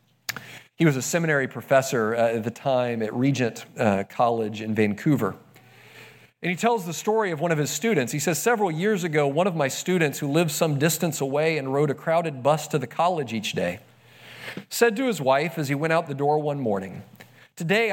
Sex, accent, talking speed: male, American, 210 wpm